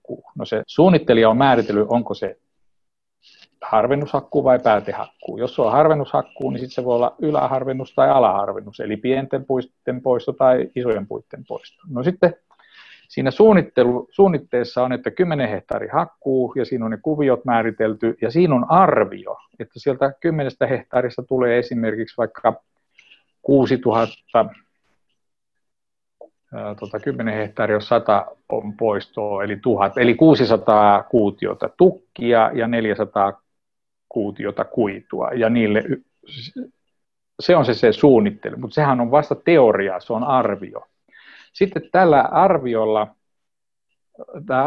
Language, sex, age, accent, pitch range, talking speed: Finnish, male, 50-69, native, 115-140 Hz, 120 wpm